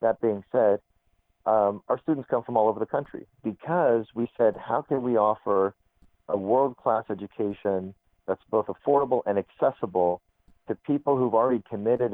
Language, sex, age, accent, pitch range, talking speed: English, male, 50-69, American, 90-110 Hz, 160 wpm